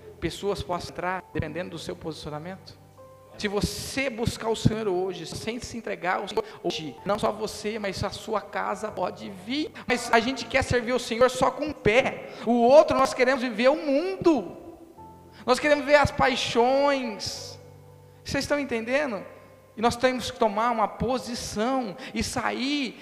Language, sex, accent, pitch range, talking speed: Portuguese, male, Brazilian, 220-270 Hz, 170 wpm